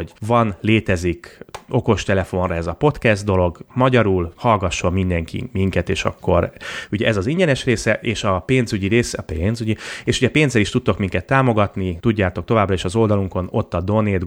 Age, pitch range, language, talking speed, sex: 30-49, 95-115 Hz, Hungarian, 170 wpm, male